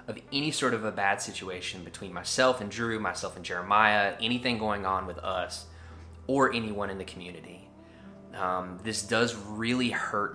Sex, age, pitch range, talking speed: male, 20-39, 90-115 Hz, 170 wpm